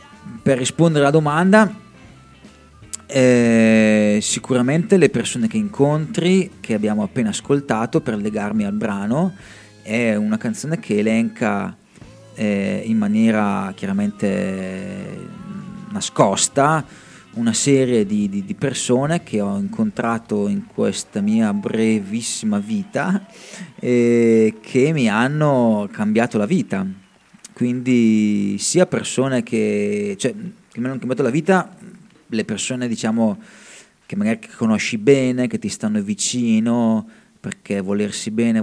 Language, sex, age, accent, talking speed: Italian, male, 30-49, native, 115 wpm